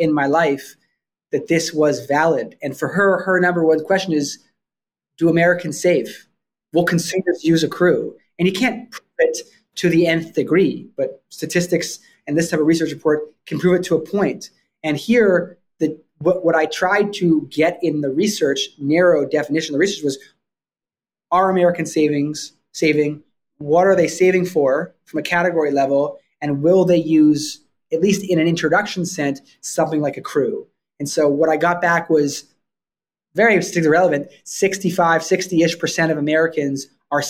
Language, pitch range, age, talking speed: English, 150-180 Hz, 20-39, 165 wpm